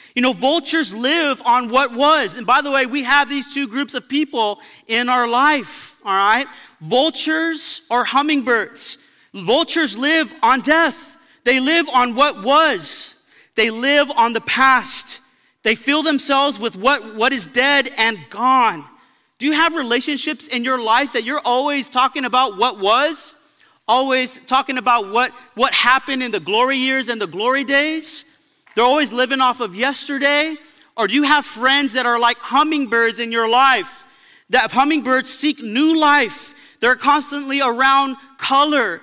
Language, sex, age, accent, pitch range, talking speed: English, male, 40-59, American, 245-290 Hz, 160 wpm